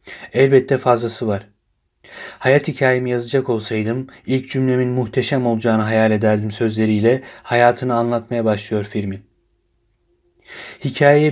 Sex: male